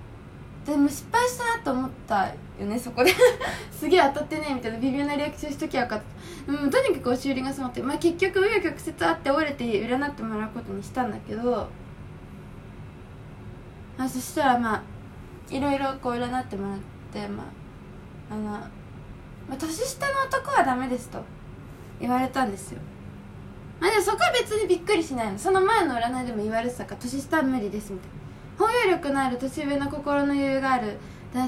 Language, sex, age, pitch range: Japanese, female, 20-39, 230-295 Hz